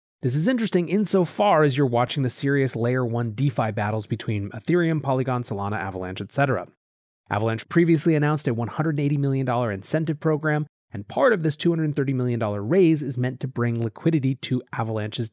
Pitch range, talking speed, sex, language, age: 115-150 Hz, 160 wpm, male, English, 30-49